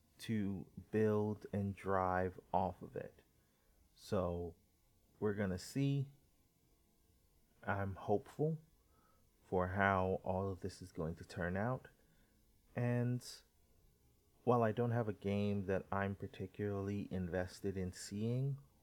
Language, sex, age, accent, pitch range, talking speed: English, male, 30-49, American, 95-115 Hz, 115 wpm